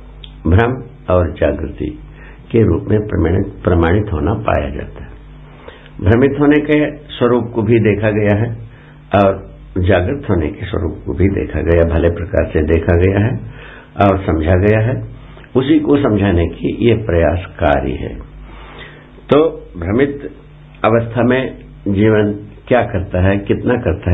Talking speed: 140 wpm